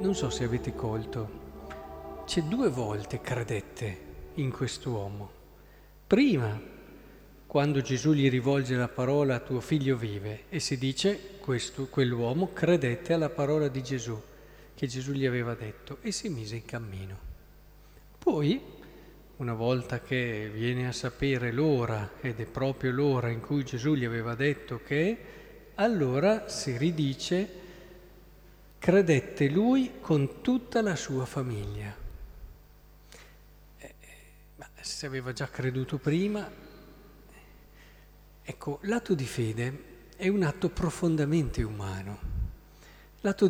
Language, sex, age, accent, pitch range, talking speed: Italian, male, 50-69, native, 120-160 Hz, 115 wpm